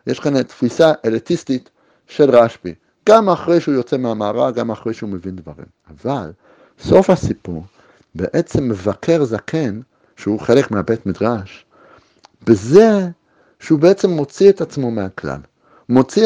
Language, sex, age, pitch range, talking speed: Hebrew, male, 60-79, 100-165 Hz, 125 wpm